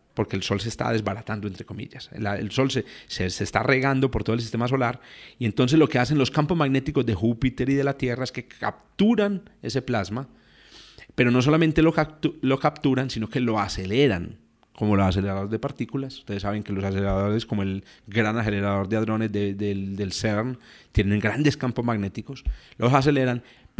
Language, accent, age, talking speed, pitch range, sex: Spanish, Colombian, 30-49, 190 wpm, 105-135 Hz, male